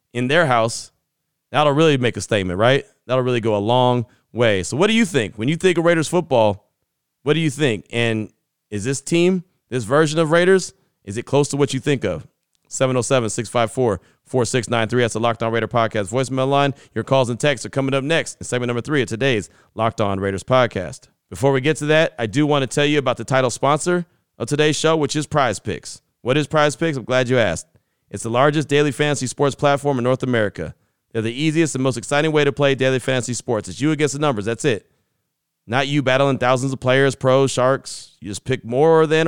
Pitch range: 115-145 Hz